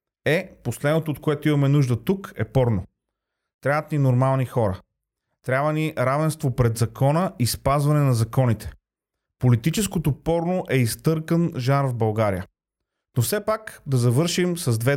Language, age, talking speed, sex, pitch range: Bulgarian, 30-49, 145 wpm, male, 125-160 Hz